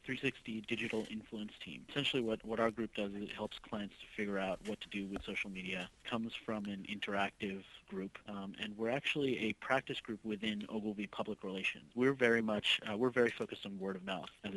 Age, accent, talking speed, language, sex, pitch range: 30-49, American, 200 wpm, English, male, 100-125 Hz